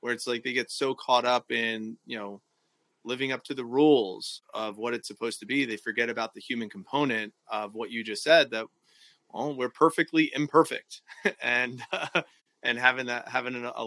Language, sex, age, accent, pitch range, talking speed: English, male, 30-49, American, 110-135 Hz, 195 wpm